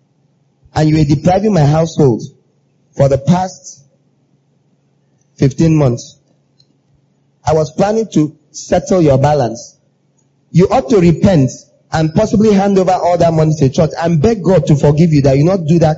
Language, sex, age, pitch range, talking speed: English, male, 30-49, 140-195 Hz, 160 wpm